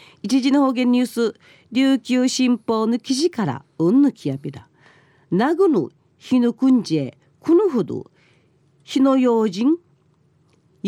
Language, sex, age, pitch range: Japanese, female, 40-59, 150-225 Hz